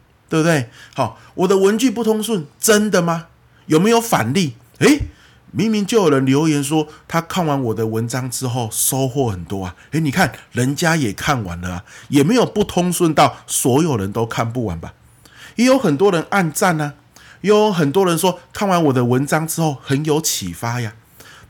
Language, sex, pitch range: Chinese, male, 115-185 Hz